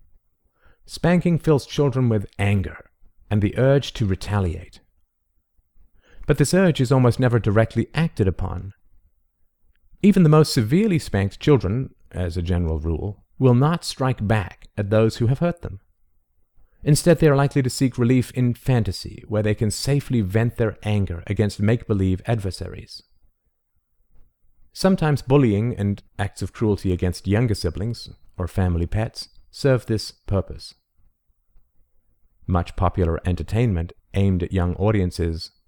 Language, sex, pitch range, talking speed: English, male, 85-120 Hz, 135 wpm